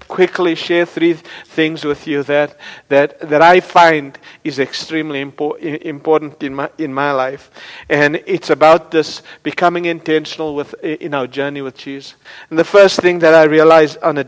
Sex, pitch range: male, 130-160 Hz